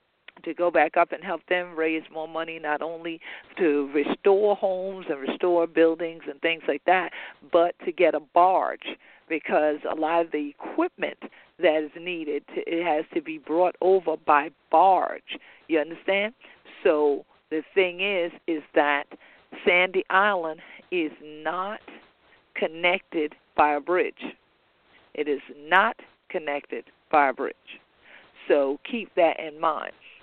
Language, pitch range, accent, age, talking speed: English, 150-180 Hz, American, 50-69, 145 wpm